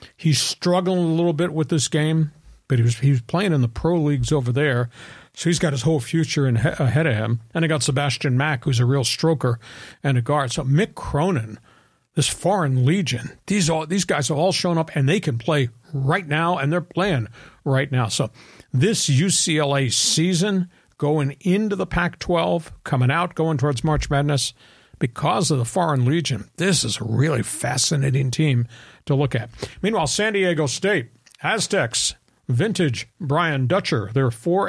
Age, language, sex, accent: 50-69, English, male, American